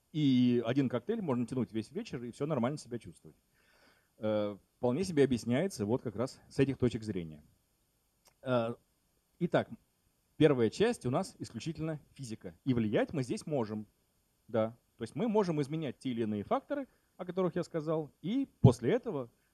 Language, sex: Russian, male